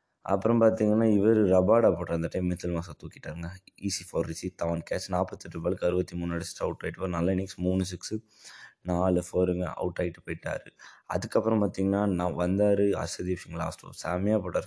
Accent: native